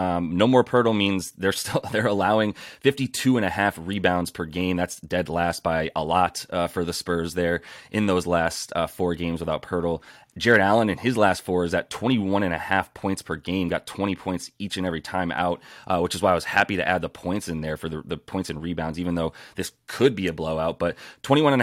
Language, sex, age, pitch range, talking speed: English, male, 30-49, 85-100 Hz, 245 wpm